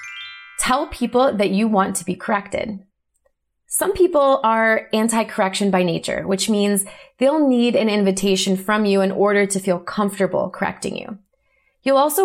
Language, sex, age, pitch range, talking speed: English, female, 20-39, 190-250 Hz, 150 wpm